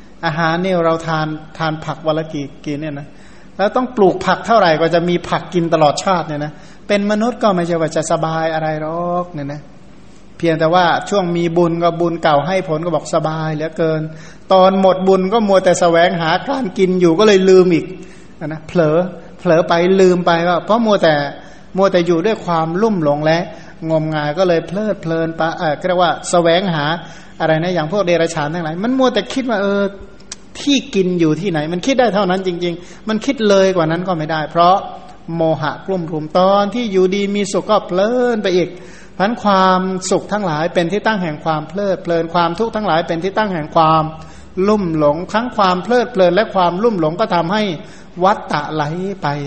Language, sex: Thai, male